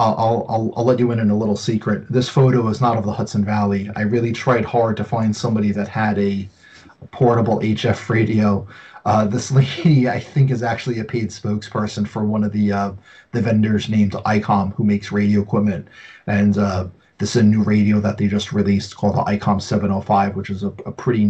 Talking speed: 210 wpm